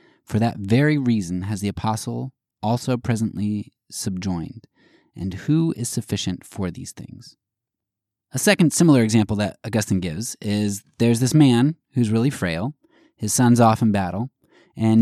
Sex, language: male, English